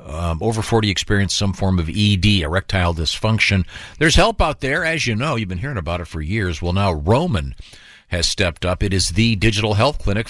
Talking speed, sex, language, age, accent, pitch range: 210 wpm, male, English, 50-69, American, 90-110 Hz